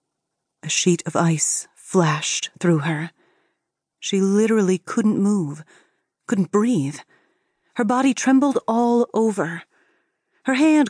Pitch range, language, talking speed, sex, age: 175-255 Hz, English, 110 wpm, female, 30-49